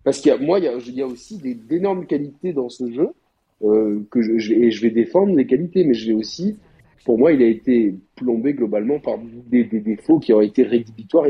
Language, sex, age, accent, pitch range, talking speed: French, male, 40-59, French, 110-150 Hz, 250 wpm